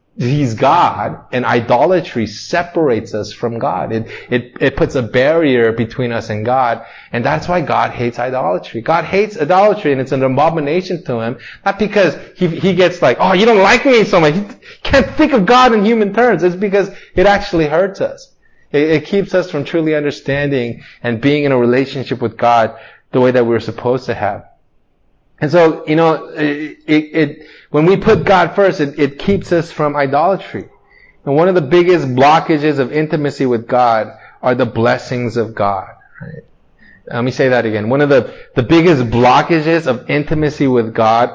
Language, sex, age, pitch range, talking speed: English, male, 30-49, 120-165 Hz, 200 wpm